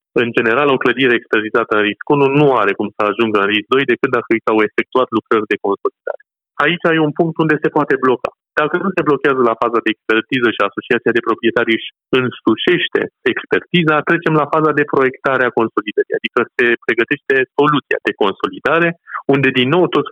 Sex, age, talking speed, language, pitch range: male, 30-49, 185 wpm, Romanian, 120-160 Hz